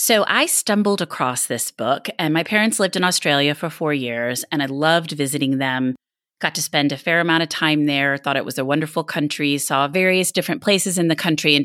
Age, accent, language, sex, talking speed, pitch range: 30-49, American, English, female, 220 wpm, 140-175 Hz